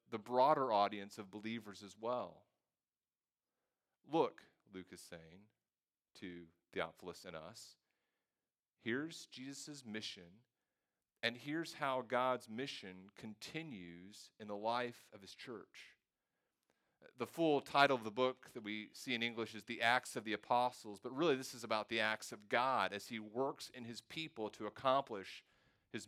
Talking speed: 150 wpm